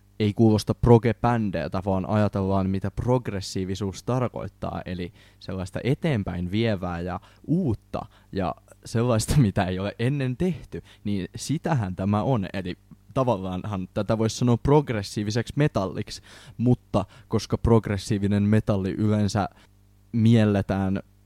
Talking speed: 105 wpm